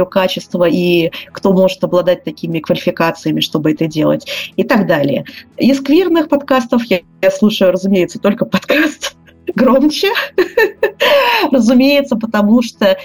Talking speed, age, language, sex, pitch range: 120 wpm, 20-39, Russian, female, 175-220 Hz